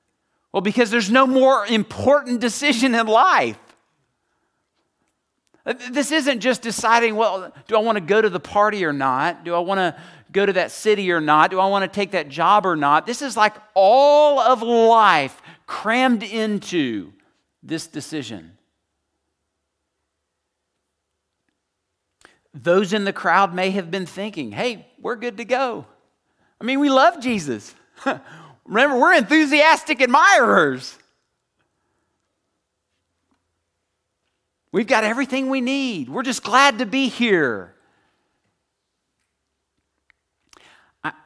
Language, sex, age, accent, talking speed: English, male, 50-69, American, 125 wpm